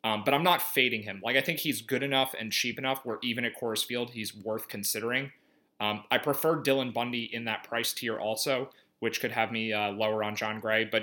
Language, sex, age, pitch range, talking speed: English, male, 30-49, 110-135 Hz, 235 wpm